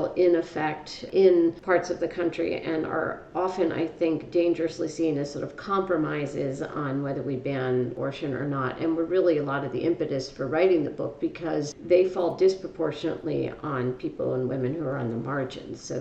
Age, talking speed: 50-69, 190 wpm